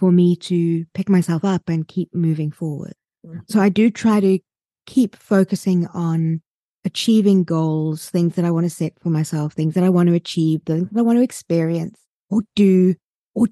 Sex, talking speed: female, 190 wpm